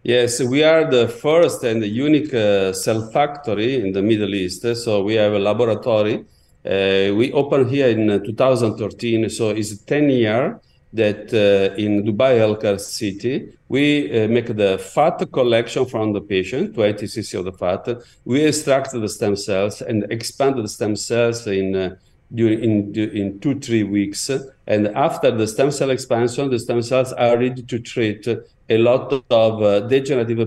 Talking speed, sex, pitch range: 170 wpm, male, 100-125 Hz